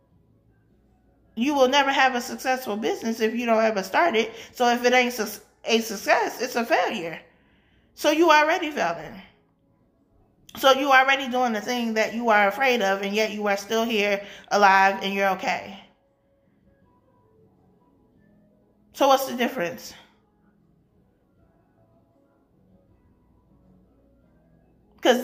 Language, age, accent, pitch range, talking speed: English, 20-39, American, 200-245 Hz, 125 wpm